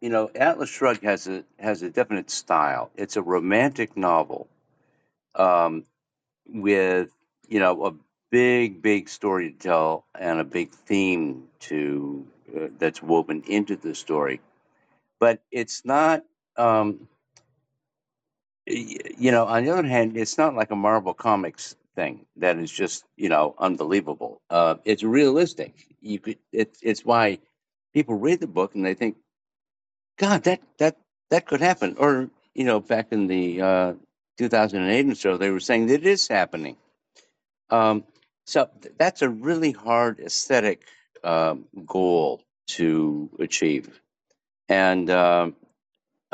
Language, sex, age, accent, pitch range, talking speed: English, male, 50-69, American, 90-120 Hz, 140 wpm